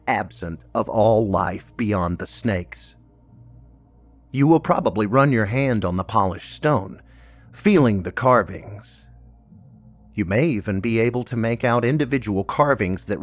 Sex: male